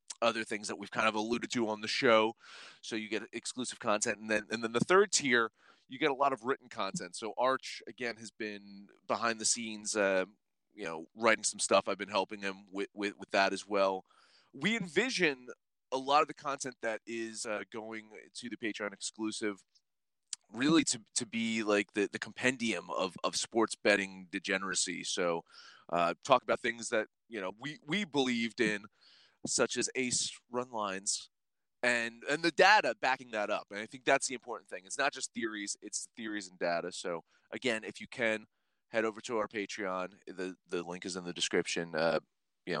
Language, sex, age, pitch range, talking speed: English, male, 30-49, 100-130 Hz, 195 wpm